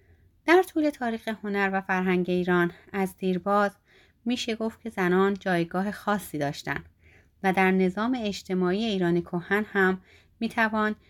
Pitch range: 180-215 Hz